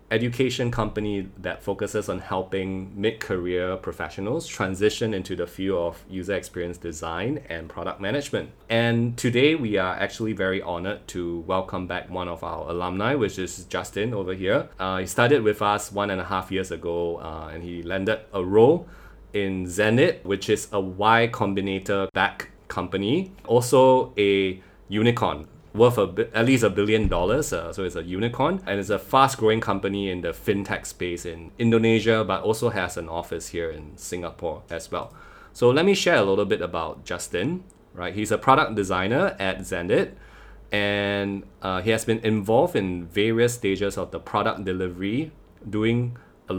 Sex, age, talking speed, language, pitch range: male, 20-39, 165 wpm, English, 95-115 Hz